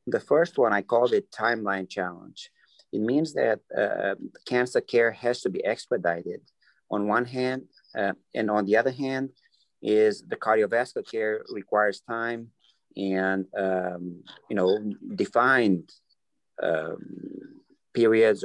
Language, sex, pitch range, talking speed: English, male, 95-125 Hz, 130 wpm